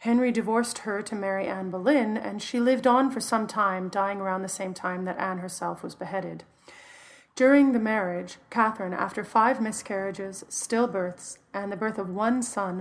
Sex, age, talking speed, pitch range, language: female, 30-49, 180 wpm, 190-240 Hz, English